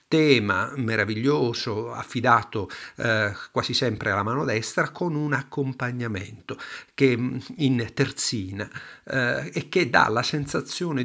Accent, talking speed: native, 115 wpm